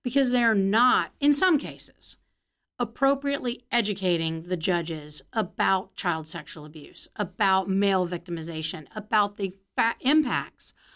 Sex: female